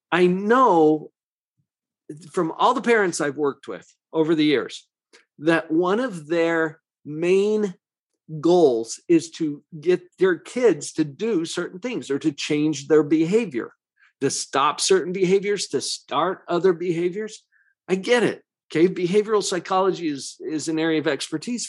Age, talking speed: 50-69, 145 wpm